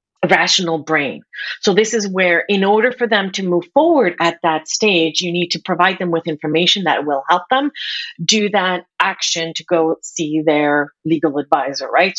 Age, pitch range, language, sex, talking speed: 40-59, 170-220 Hz, English, female, 180 wpm